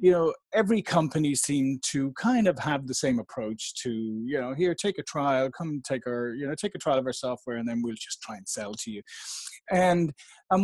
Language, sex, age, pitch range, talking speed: English, male, 40-59, 135-175 Hz, 230 wpm